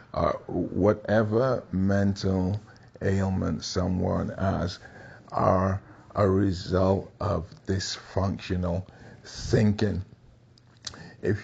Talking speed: 70 wpm